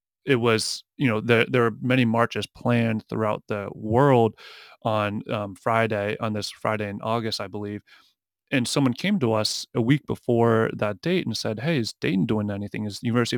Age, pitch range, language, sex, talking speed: 30-49, 110-120 Hz, English, male, 195 wpm